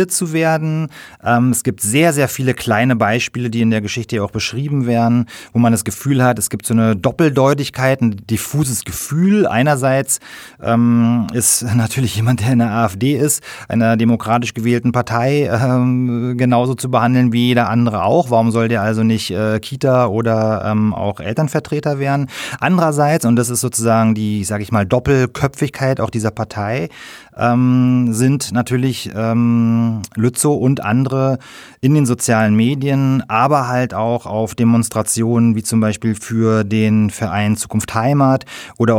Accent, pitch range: German, 110-125 Hz